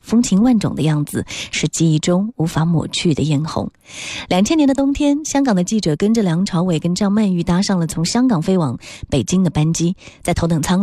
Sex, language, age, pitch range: female, Chinese, 20-39, 165-225 Hz